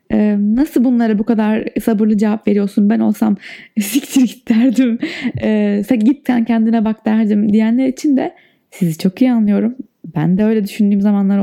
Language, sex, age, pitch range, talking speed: Turkish, female, 20-39, 190-245 Hz, 160 wpm